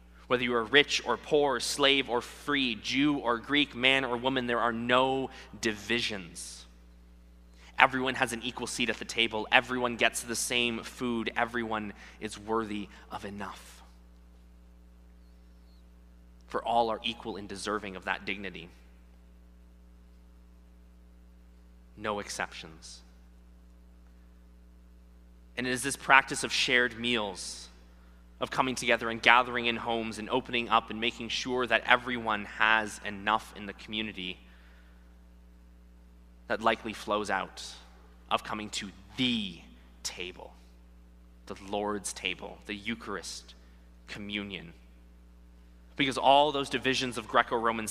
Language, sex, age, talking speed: English, male, 20-39, 120 wpm